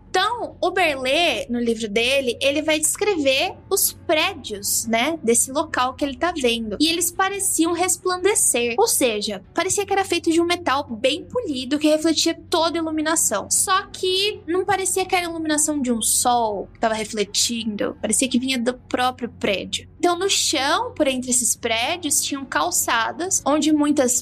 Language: Portuguese